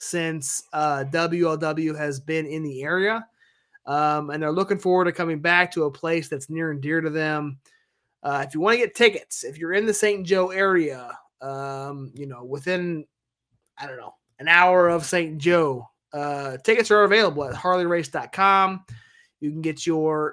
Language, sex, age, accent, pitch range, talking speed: English, male, 20-39, American, 145-180 Hz, 180 wpm